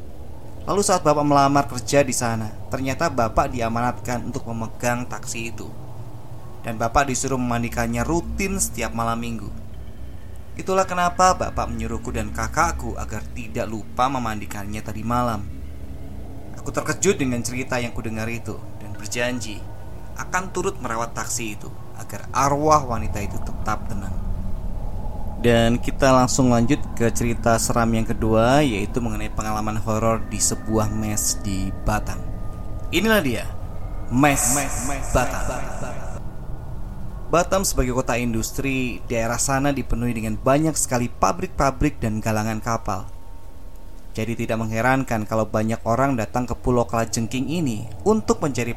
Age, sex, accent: 20-39, male, native